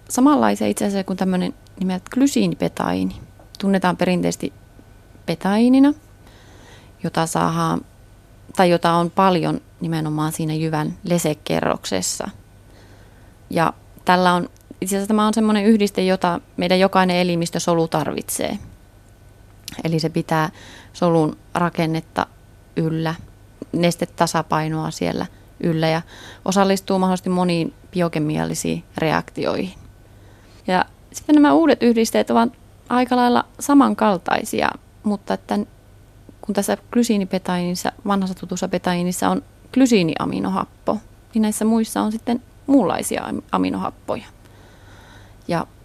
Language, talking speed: Finnish, 100 wpm